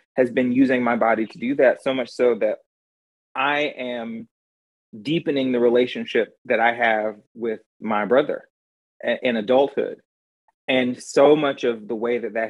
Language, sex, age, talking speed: English, male, 30-49, 160 wpm